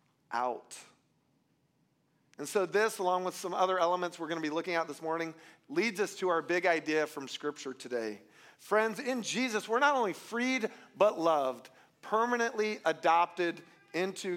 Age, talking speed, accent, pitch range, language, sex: 40-59, 160 wpm, American, 155-205 Hz, English, male